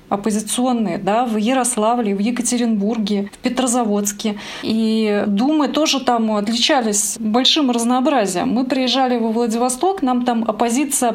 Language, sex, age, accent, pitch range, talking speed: Russian, female, 30-49, native, 210-245 Hz, 120 wpm